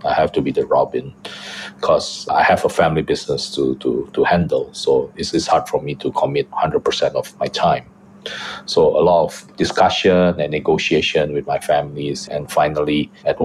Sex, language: male, English